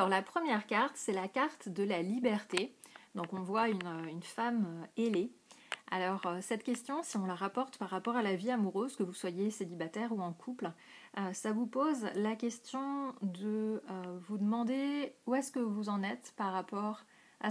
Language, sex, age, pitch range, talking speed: English, female, 30-49, 185-230 Hz, 190 wpm